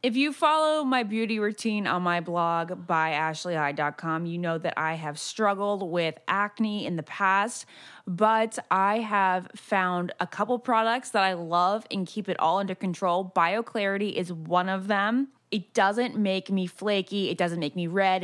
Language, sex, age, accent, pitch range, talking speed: English, female, 20-39, American, 175-225 Hz, 175 wpm